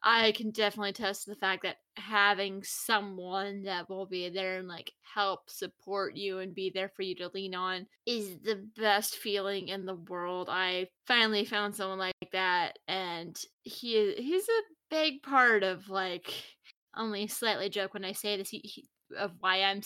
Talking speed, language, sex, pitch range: 180 wpm, English, female, 185-225 Hz